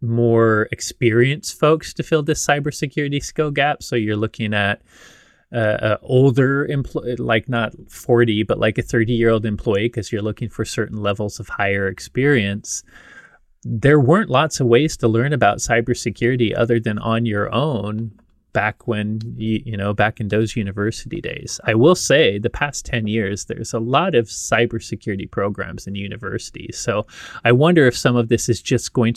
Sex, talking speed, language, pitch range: male, 175 wpm, English, 105-120 Hz